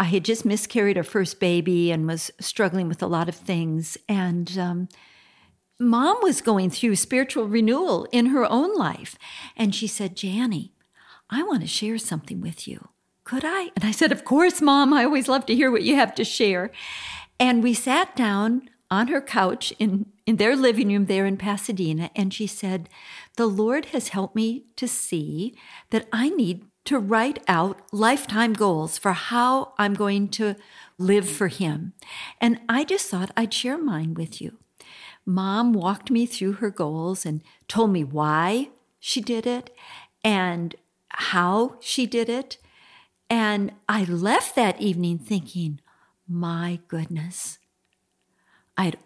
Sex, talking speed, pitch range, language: female, 165 wpm, 185-245 Hz, English